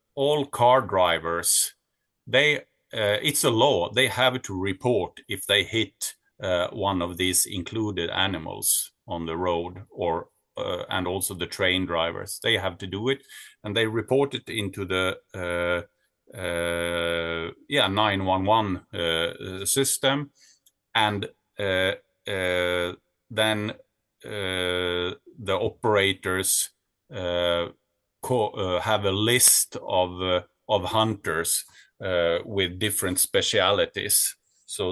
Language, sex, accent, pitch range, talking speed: English, male, Norwegian, 90-110 Hz, 115 wpm